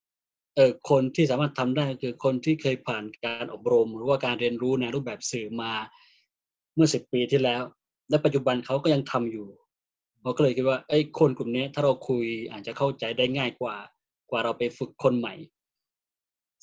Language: Thai